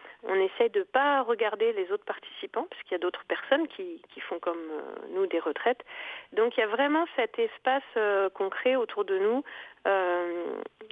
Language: French